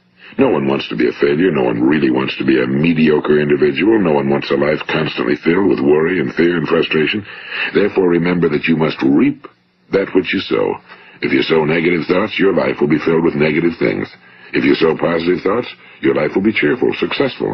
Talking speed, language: 215 wpm, English